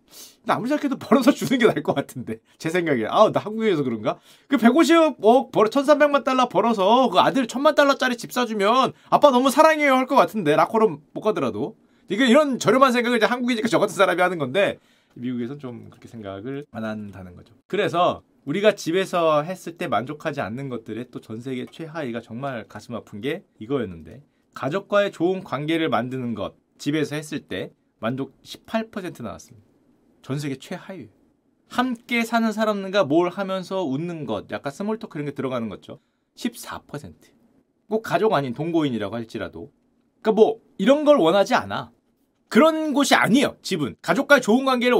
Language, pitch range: Korean, 145-245 Hz